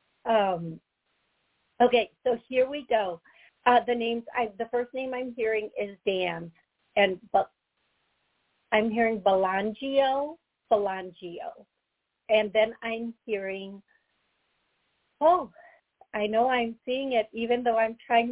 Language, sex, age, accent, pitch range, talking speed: English, female, 40-59, American, 205-250 Hz, 120 wpm